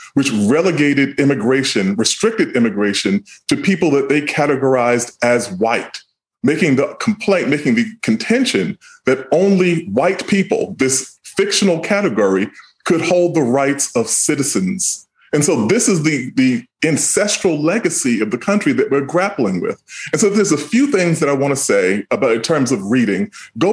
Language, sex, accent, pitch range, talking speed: English, female, American, 130-200 Hz, 160 wpm